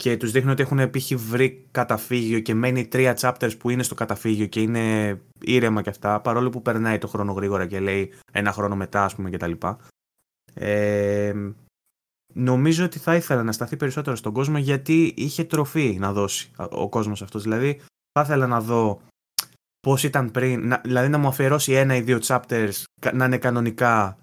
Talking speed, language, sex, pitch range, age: 175 wpm, Greek, male, 115-135 Hz, 20-39